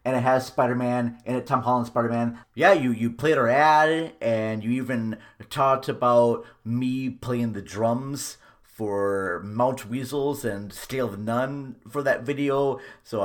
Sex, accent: male, American